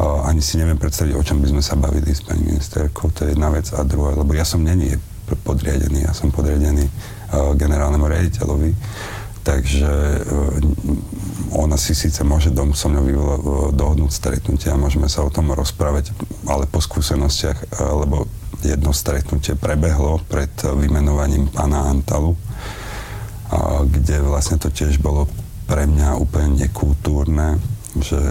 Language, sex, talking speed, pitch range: Slovak, male, 155 wpm, 70-85 Hz